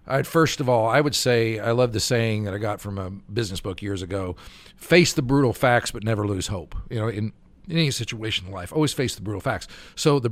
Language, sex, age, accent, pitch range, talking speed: English, male, 50-69, American, 105-140 Hz, 250 wpm